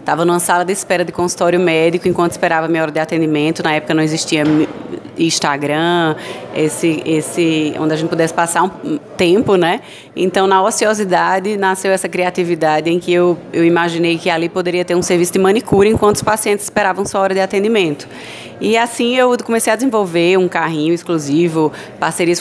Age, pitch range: 20-39, 170-210 Hz